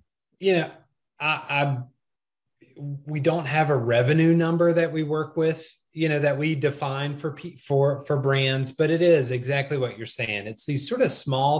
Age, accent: 30-49, American